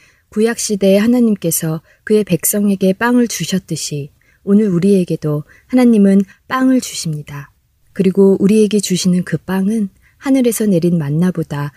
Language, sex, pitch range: Korean, female, 160-205 Hz